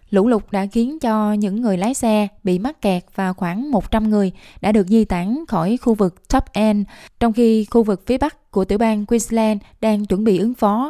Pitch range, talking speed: 195-230 Hz, 220 wpm